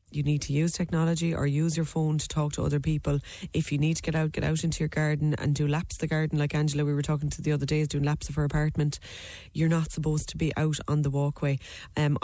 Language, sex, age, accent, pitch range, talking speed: English, female, 20-39, Irish, 135-170 Hz, 270 wpm